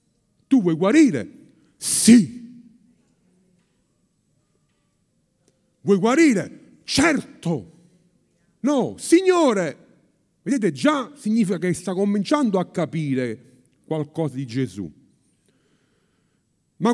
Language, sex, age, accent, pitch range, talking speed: Italian, male, 50-69, native, 180-250 Hz, 75 wpm